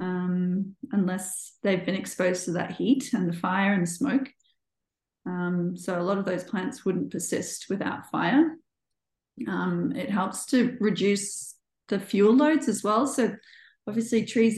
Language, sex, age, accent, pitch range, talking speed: English, female, 30-49, Australian, 190-230 Hz, 155 wpm